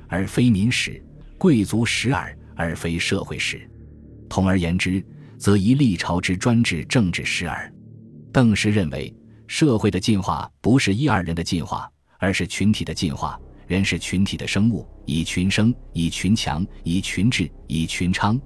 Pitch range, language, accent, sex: 85-110 Hz, Chinese, native, male